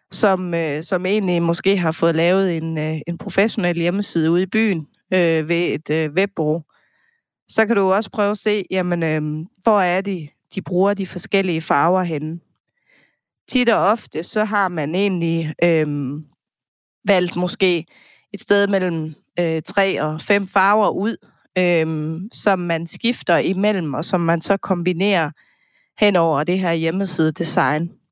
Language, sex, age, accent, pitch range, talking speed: Danish, female, 30-49, native, 160-195 Hz, 150 wpm